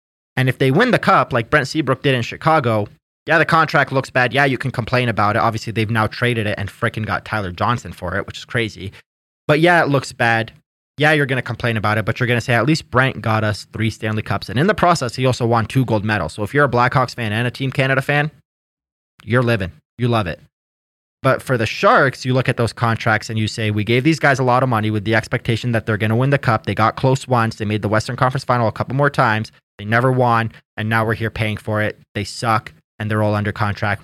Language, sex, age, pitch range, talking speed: English, male, 20-39, 105-130 Hz, 265 wpm